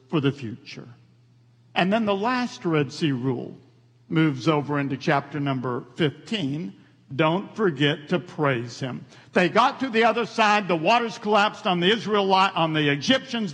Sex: male